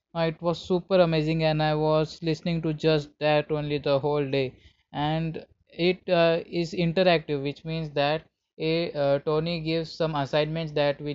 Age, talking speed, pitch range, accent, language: 20-39, 165 wpm, 145-160 Hz, native, Hindi